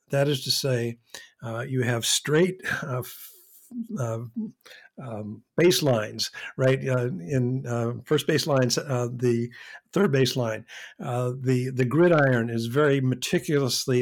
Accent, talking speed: American, 130 wpm